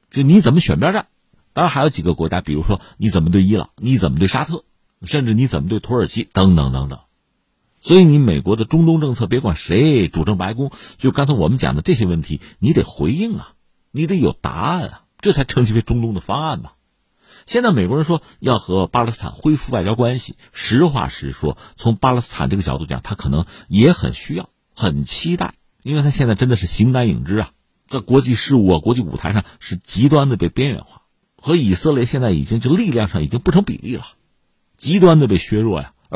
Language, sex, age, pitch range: Chinese, male, 50-69, 90-140 Hz